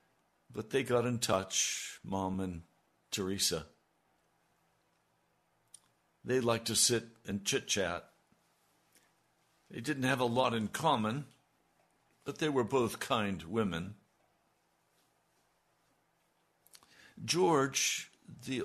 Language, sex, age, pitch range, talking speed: English, male, 60-79, 90-115 Hz, 95 wpm